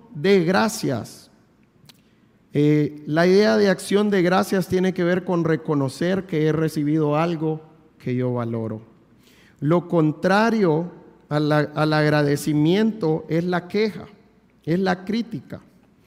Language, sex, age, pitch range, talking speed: English, male, 40-59, 150-190 Hz, 115 wpm